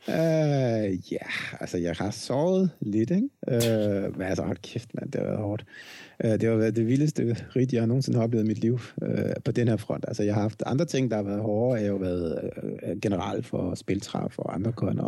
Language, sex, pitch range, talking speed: Danish, male, 105-125 Hz, 245 wpm